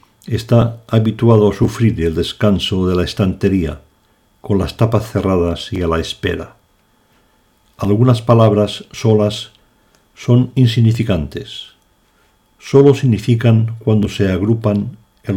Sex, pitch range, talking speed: male, 90-115 Hz, 110 wpm